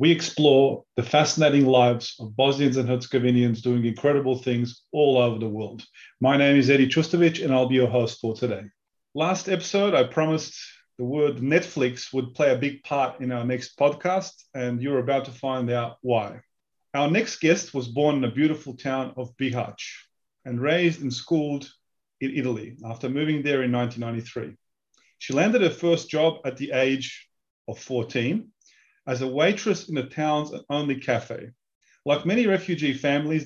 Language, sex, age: English, male, 30-49